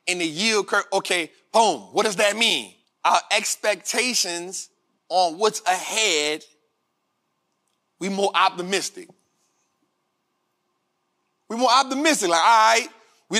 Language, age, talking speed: English, 30-49, 110 wpm